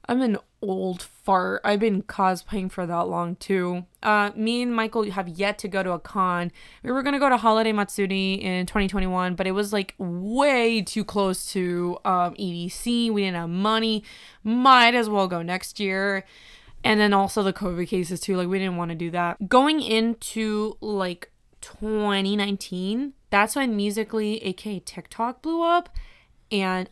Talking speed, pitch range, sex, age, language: 170 wpm, 190-235 Hz, female, 20-39, English